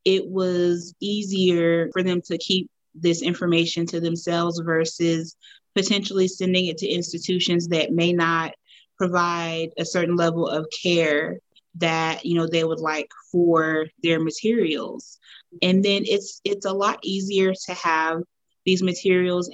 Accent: American